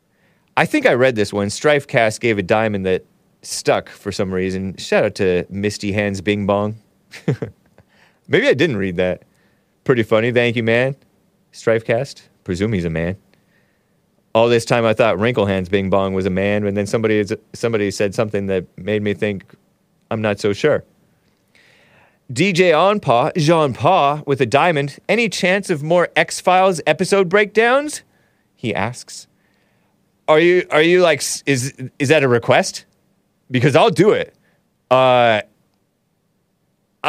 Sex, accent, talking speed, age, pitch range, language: male, American, 150 wpm, 30-49, 105-160 Hz, English